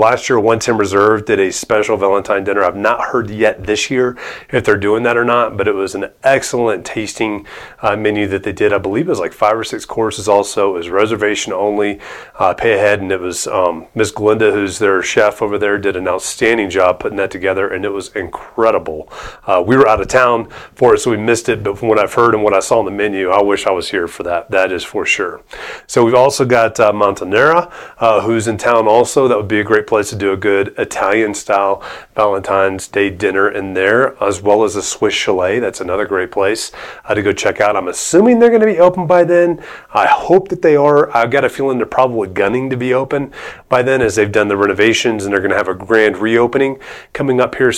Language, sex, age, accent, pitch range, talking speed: English, male, 30-49, American, 105-130 Hz, 240 wpm